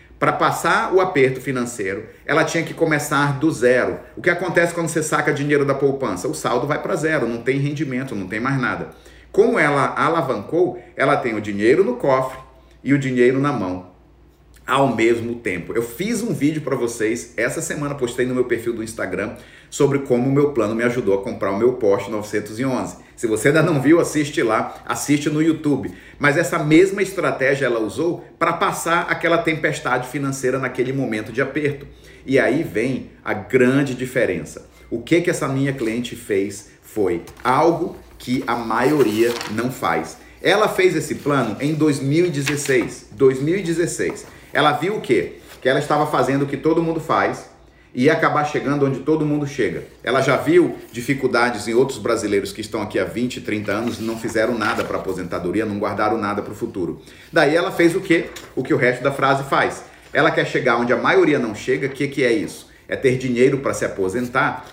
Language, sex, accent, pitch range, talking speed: English, male, Brazilian, 120-160 Hz, 190 wpm